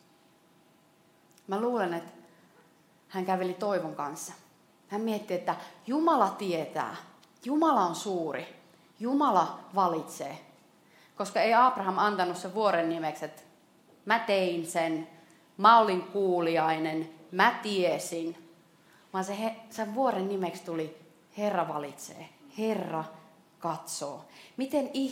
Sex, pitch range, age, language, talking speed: female, 165-210 Hz, 30-49, Finnish, 105 wpm